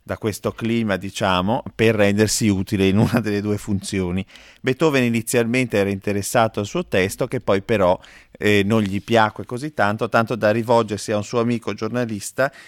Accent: native